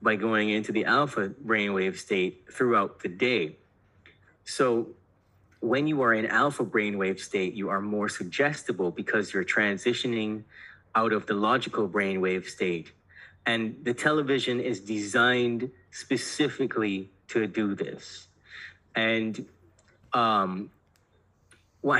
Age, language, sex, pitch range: 30-49, English, male, 100-125 Hz